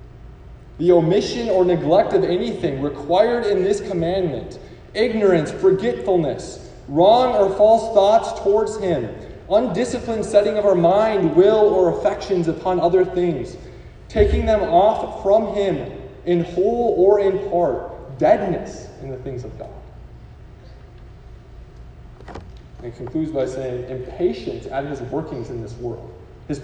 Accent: American